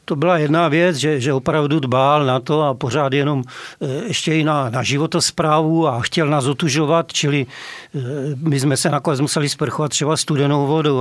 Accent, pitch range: native, 145-165 Hz